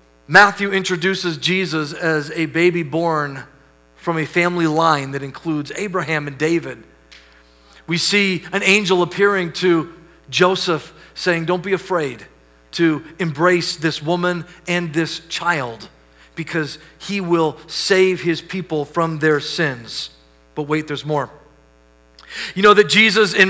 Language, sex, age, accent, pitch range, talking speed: English, male, 40-59, American, 150-210 Hz, 135 wpm